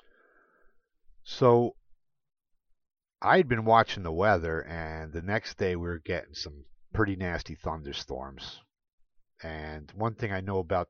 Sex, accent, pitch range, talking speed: male, American, 85-115 Hz, 130 wpm